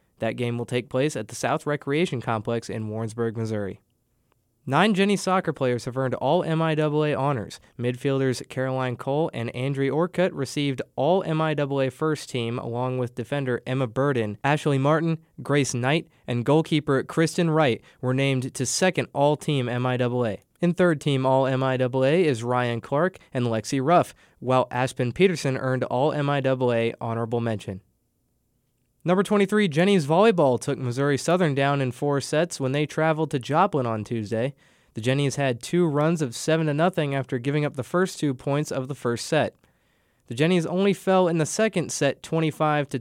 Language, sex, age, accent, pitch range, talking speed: English, male, 20-39, American, 125-160 Hz, 155 wpm